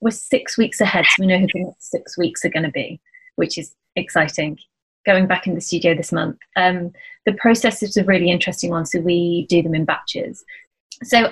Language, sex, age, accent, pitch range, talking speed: English, female, 30-49, British, 165-195 Hz, 215 wpm